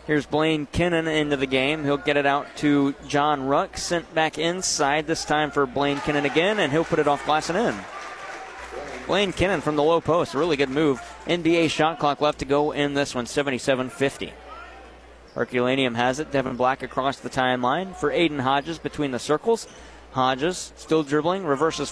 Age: 30-49